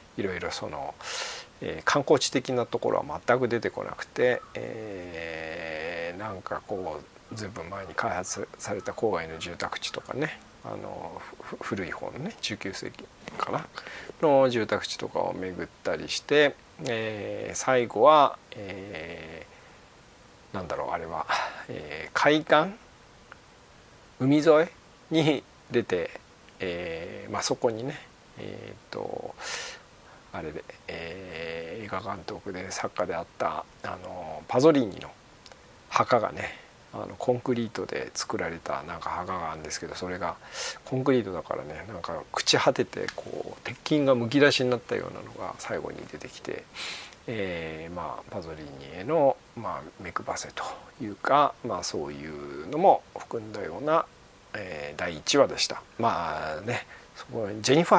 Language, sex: Japanese, male